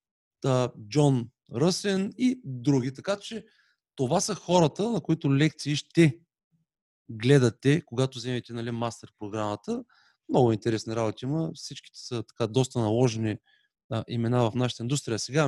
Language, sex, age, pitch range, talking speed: Bulgarian, male, 30-49, 120-145 Hz, 130 wpm